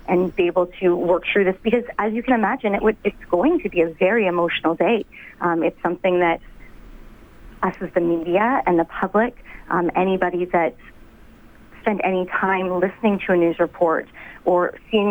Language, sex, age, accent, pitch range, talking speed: English, female, 30-49, American, 175-195 Hz, 185 wpm